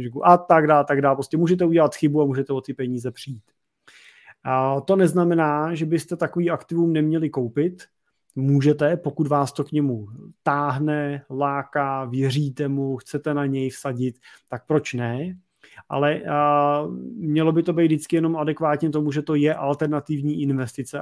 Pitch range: 135-155 Hz